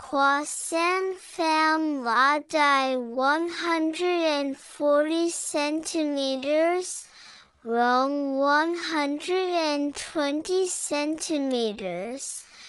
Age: 10-29